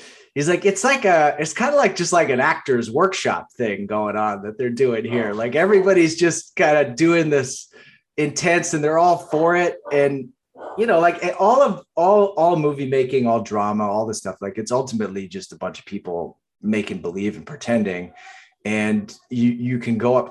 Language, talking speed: English, 200 wpm